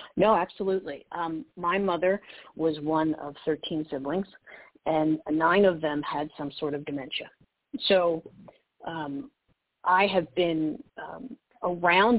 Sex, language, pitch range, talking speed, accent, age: female, English, 160-195 Hz, 130 wpm, American, 50-69